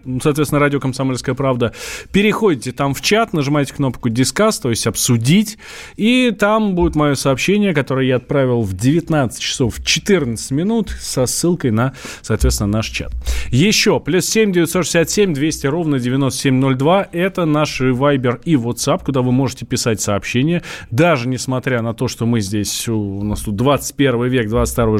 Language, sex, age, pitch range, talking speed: Russian, male, 20-39, 120-155 Hz, 145 wpm